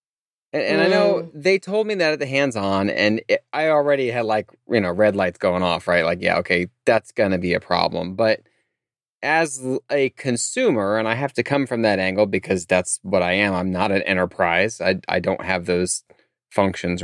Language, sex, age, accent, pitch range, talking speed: English, male, 30-49, American, 100-130 Hz, 210 wpm